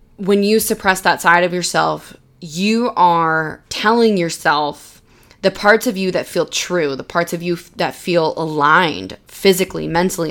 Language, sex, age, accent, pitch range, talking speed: English, female, 20-39, American, 165-195 Hz, 155 wpm